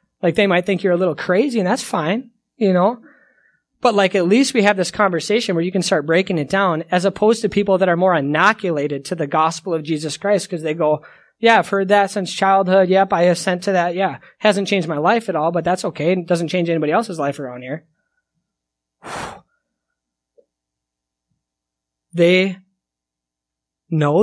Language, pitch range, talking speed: English, 150-205 Hz, 190 wpm